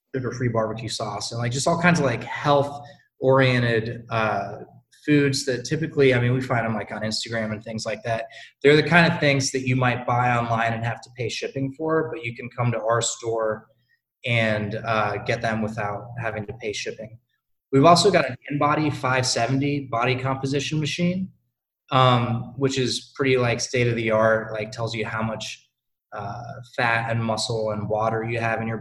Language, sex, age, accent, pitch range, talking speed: English, male, 20-39, American, 115-135 Hz, 200 wpm